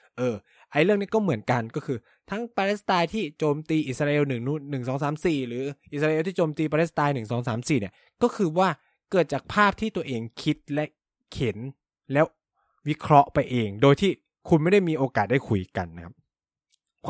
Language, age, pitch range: Thai, 20-39, 120-165 Hz